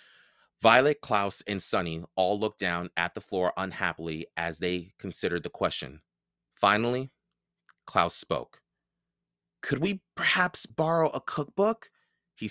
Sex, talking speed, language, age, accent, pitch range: male, 125 wpm, English, 30-49, American, 100-165 Hz